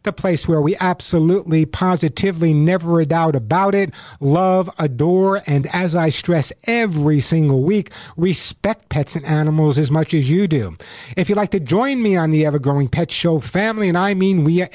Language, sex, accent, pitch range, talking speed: English, male, American, 160-210 Hz, 185 wpm